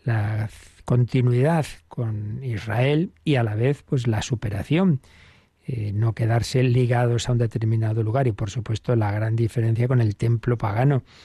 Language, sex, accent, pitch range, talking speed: Spanish, male, Spanish, 110-135 Hz, 155 wpm